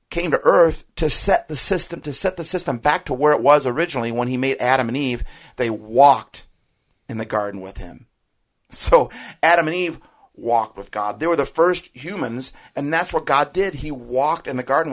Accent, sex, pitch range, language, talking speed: American, male, 110-145 Hz, English, 210 wpm